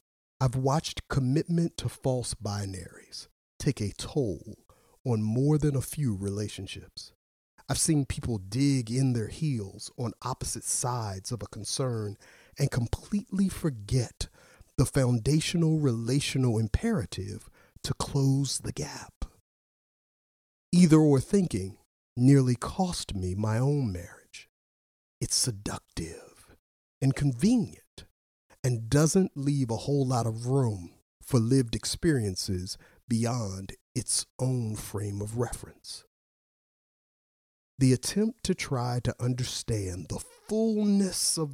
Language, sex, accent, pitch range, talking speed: English, male, American, 105-145 Hz, 115 wpm